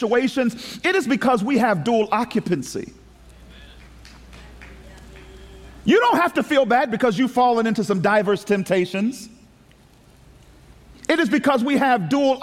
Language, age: English, 40-59